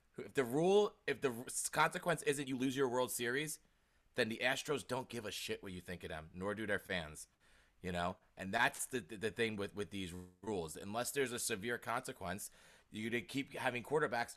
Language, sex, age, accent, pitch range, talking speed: English, male, 20-39, American, 100-125 Hz, 210 wpm